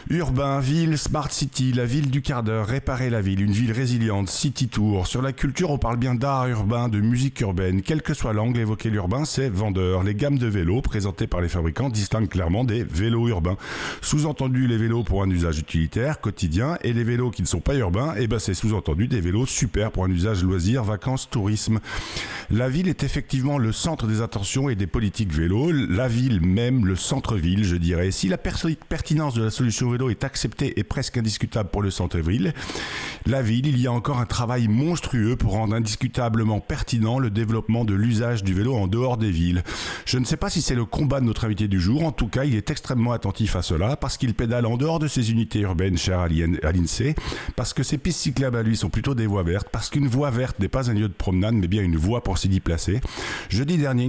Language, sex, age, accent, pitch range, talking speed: French, male, 50-69, French, 100-130 Hz, 220 wpm